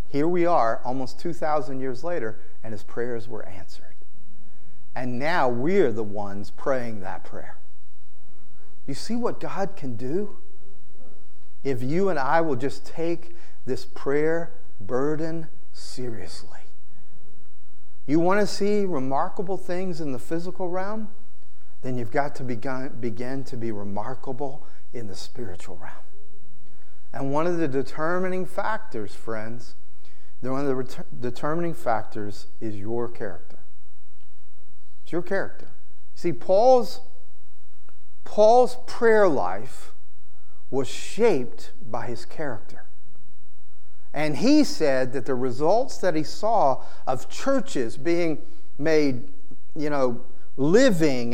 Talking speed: 120 wpm